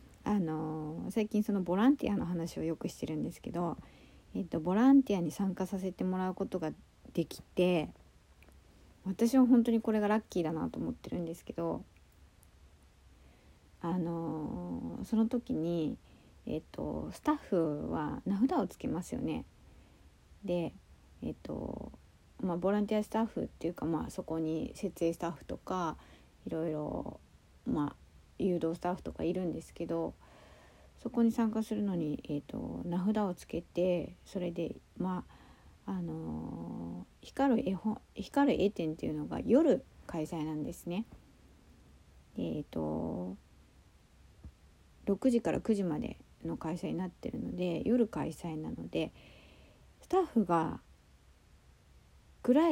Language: Japanese